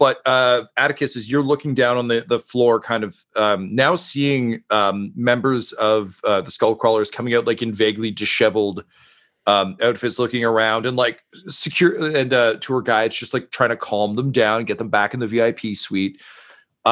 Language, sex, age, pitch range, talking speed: English, male, 40-59, 105-145 Hz, 195 wpm